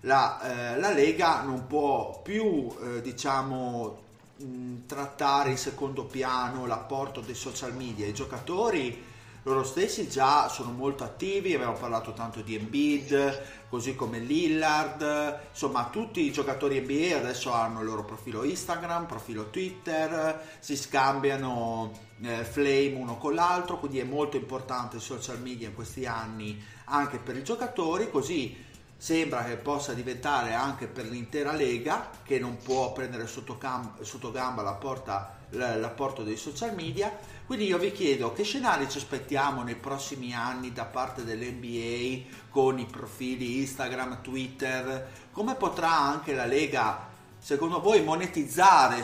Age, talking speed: 30-49, 140 wpm